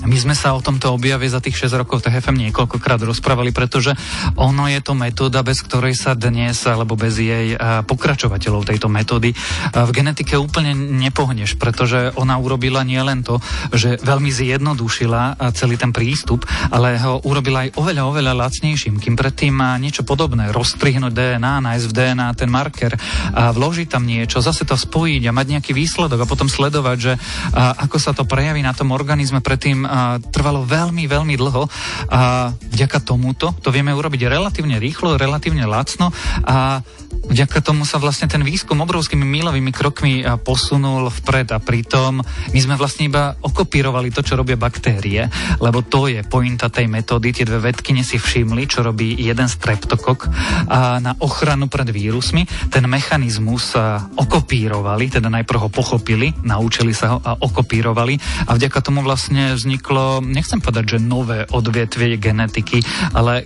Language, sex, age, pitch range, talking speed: Slovak, male, 30-49, 120-140 Hz, 155 wpm